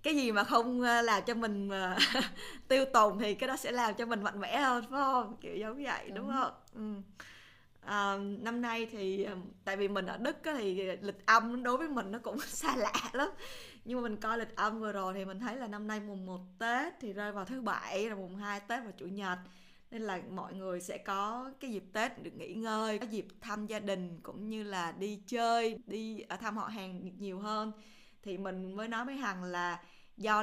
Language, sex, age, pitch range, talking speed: Vietnamese, female, 20-39, 190-230 Hz, 215 wpm